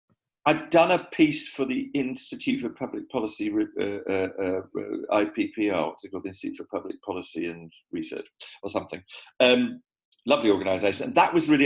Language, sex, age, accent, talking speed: English, male, 40-59, British, 170 wpm